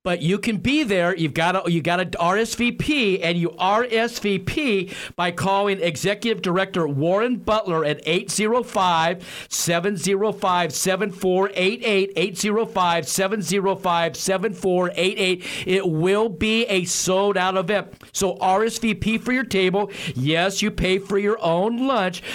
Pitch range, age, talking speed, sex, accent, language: 175-210 Hz, 50-69, 115 wpm, male, American, English